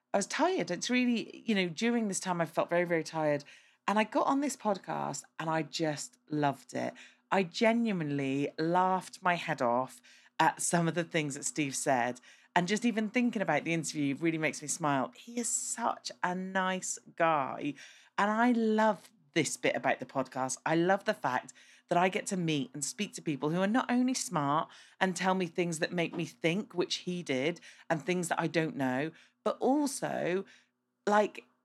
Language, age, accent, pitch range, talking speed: English, 40-59, British, 150-210 Hz, 195 wpm